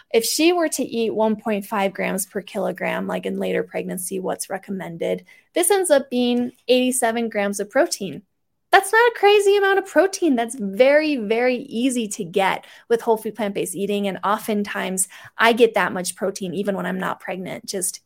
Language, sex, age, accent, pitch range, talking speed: English, female, 20-39, American, 200-245 Hz, 180 wpm